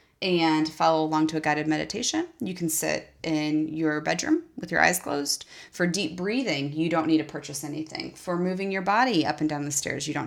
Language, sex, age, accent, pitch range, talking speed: English, female, 30-49, American, 150-170 Hz, 215 wpm